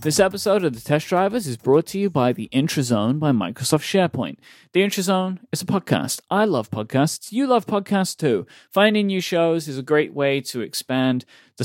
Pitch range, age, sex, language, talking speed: 120-170 Hz, 40-59, male, English, 195 wpm